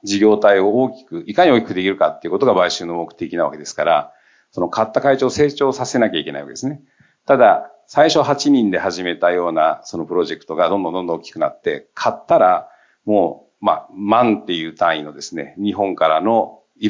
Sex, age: male, 50-69